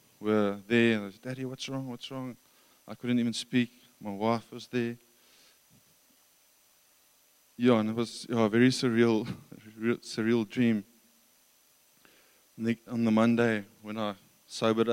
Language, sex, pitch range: English, male, 110-120 Hz